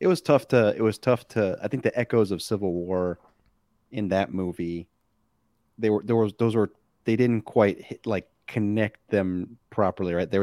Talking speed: 190 wpm